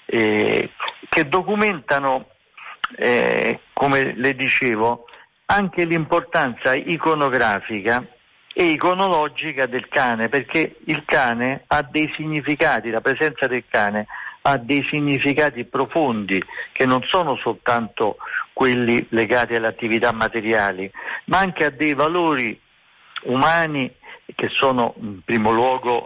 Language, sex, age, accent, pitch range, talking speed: Italian, male, 50-69, native, 115-150 Hz, 110 wpm